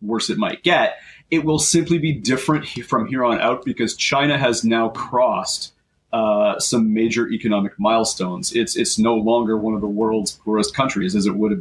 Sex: male